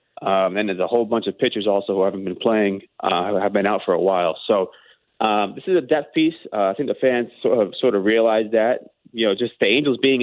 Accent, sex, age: American, male, 30-49